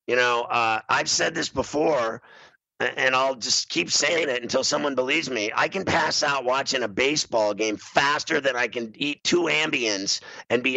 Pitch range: 115-140 Hz